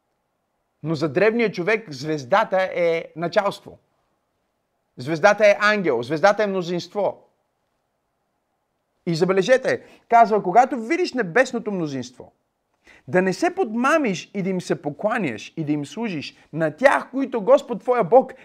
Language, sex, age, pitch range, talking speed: Bulgarian, male, 30-49, 165-245 Hz, 125 wpm